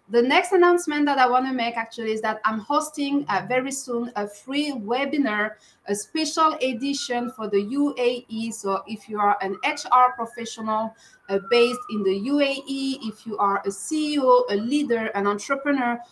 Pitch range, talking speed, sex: 210-290 Hz, 170 wpm, female